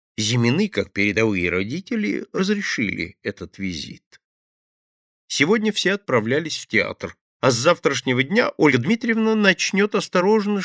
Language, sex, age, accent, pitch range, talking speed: Russian, male, 50-69, native, 115-190 Hz, 115 wpm